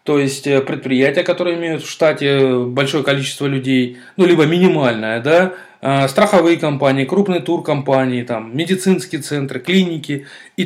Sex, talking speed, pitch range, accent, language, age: male, 135 wpm, 130-170 Hz, native, Russian, 20-39